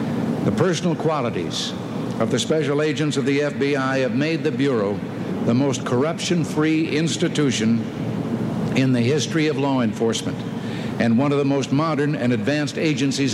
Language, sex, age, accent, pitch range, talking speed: English, male, 60-79, American, 125-155 Hz, 145 wpm